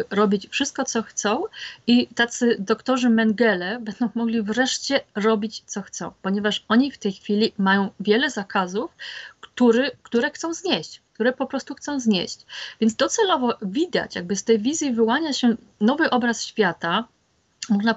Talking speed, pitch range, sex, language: 145 wpm, 200-240 Hz, female, Polish